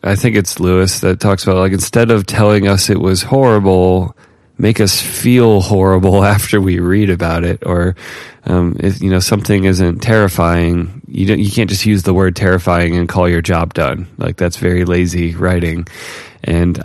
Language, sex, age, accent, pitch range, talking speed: English, male, 20-39, American, 90-110 Hz, 180 wpm